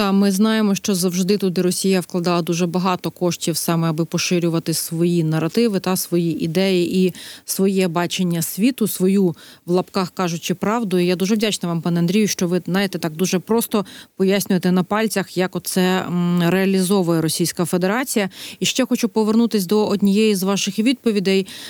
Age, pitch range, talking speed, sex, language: 30-49, 175-205 Hz, 160 wpm, female, Ukrainian